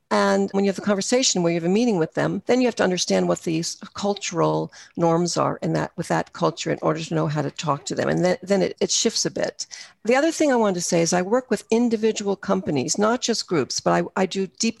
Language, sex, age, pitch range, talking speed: English, female, 50-69, 180-225 Hz, 270 wpm